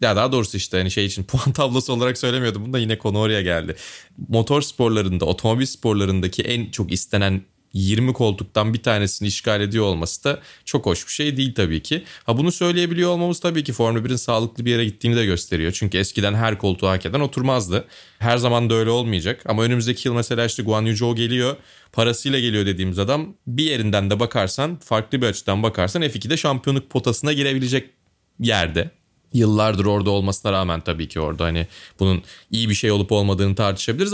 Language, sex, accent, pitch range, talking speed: Turkish, male, native, 95-125 Hz, 185 wpm